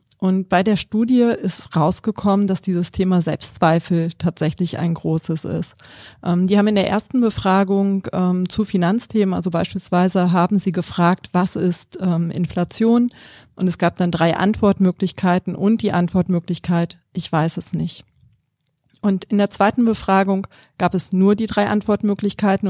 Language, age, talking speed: German, 40-59, 150 wpm